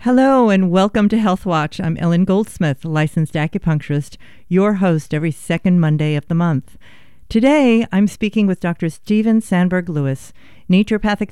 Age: 50-69